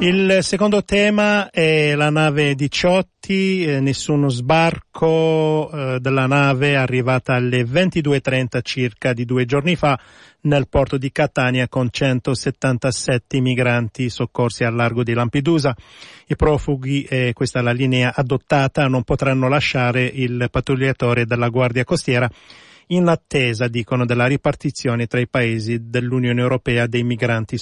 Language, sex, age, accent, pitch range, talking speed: Italian, male, 40-59, native, 125-150 Hz, 125 wpm